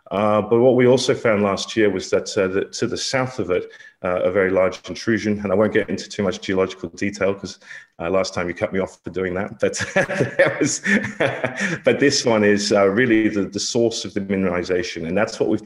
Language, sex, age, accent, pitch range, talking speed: English, male, 40-59, British, 95-110 Hz, 220 wpm